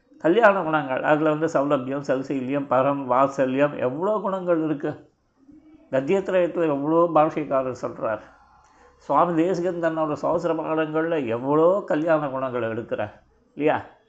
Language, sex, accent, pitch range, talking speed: Tamil, male, native, 155-175 Hz, 100 wpm